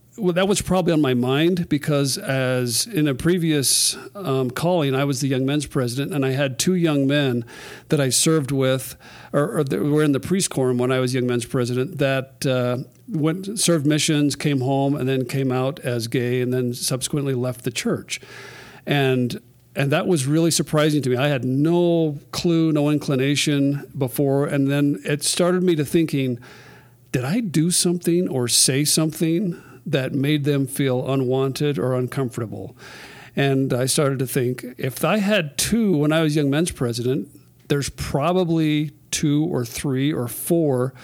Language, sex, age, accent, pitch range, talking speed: English, male, 50-69, American, 130-160 Hz, 175 wpm